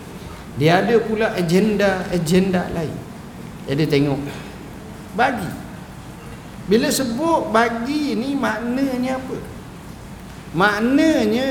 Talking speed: 85 wpm